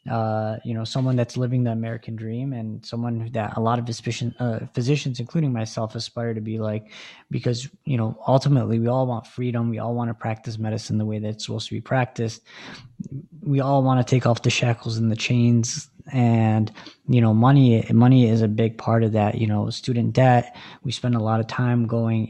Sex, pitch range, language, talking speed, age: male, 115-130 Hz, English, 215 wpm, 20-39